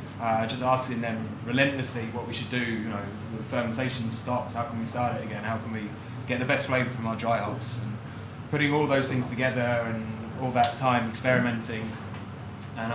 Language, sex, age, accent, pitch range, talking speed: English, male, 20-39, British, 115-130 Hz, 195 wpm